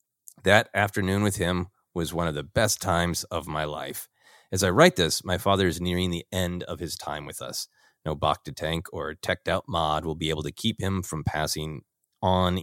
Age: 30-49